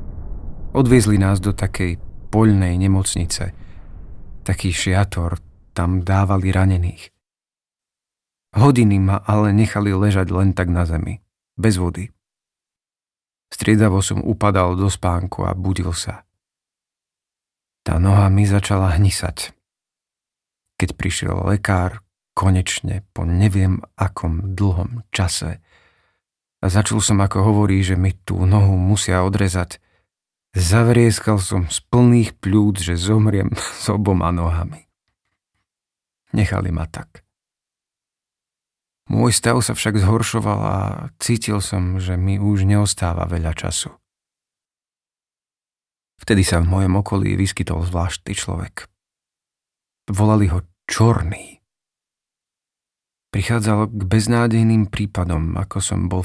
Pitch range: 90-105 Hz